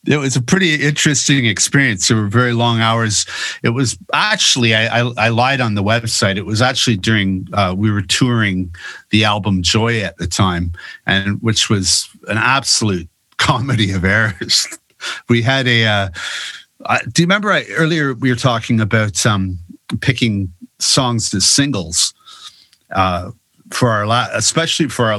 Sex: male